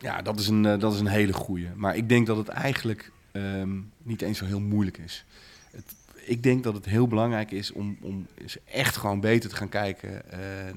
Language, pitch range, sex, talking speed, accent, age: Dutch, 100-125 Hz, male, 215 wpm, Dutch, 40-59